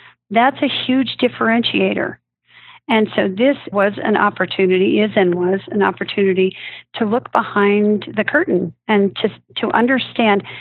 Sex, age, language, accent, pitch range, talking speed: female, 50-69, English, American, 195-235 Hz, 135 wpm